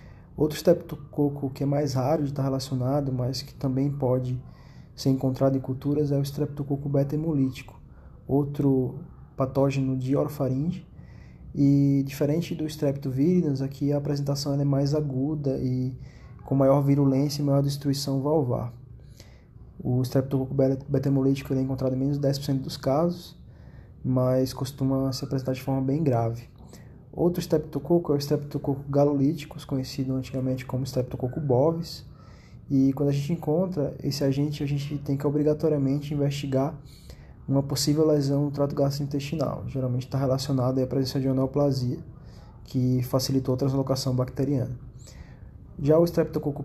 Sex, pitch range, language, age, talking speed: male, 130-145 Hz, Portuguese, 20-39, 140 wpm